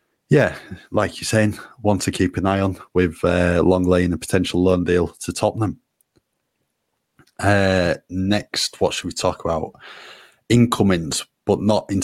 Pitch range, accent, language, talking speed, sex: 85-95 Hz, British, English, 155 wpm, male